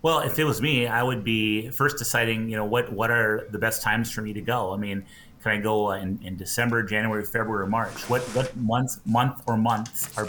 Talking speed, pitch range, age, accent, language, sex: 240 wpm, 105-120 Hz, 30-49, American, English, male